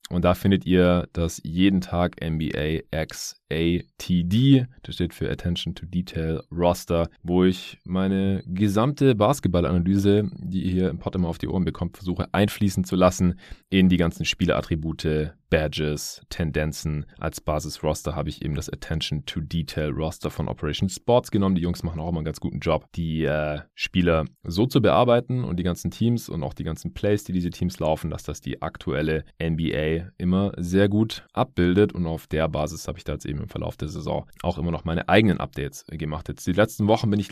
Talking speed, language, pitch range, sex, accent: 185 wpm, German, 80-95 Hz, male, German